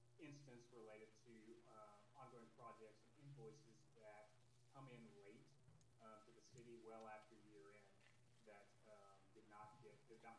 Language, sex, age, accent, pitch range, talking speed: English, male, 30-49, American, 110-120 Hz, 155 wpm